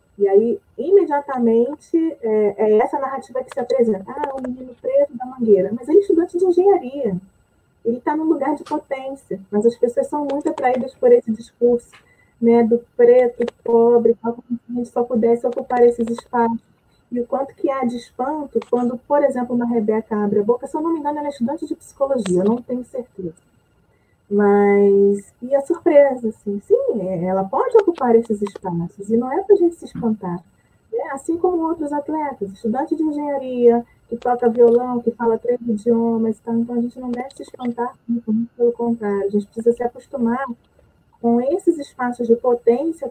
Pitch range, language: 220-275 Hz, Portuguese